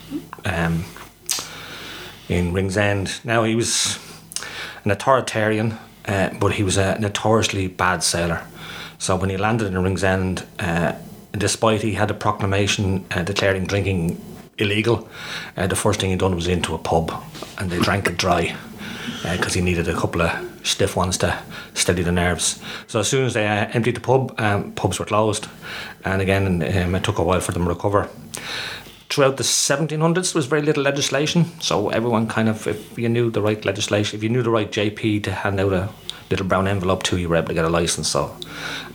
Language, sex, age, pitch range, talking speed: English, male, 30-49, 90-115 Hz, 195 wpm